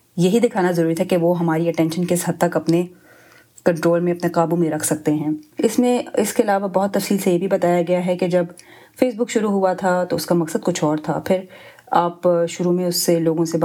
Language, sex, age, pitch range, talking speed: Urdu, female, 30-49, 165-185 Hz, 240 wpm